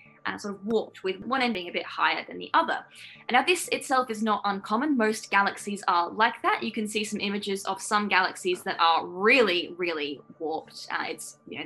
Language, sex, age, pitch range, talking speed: English, female, 10-29, 190-255 Hz, 220 wpm